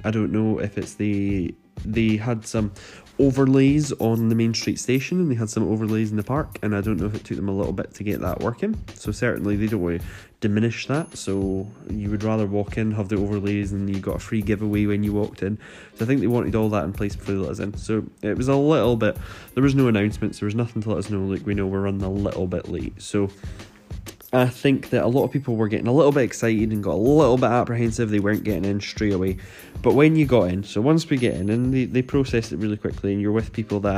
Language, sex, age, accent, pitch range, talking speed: English, male, 10-29, British, 100-120 Hz, 270 wpm